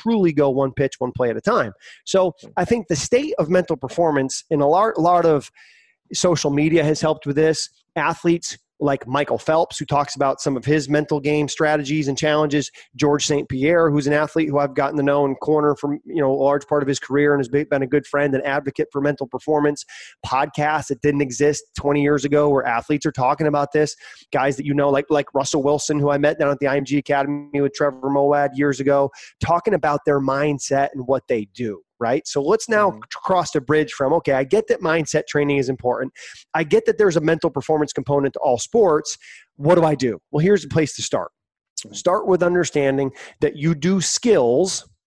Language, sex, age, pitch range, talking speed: English, male, 30-49, 140-170 Hz, 215 wpm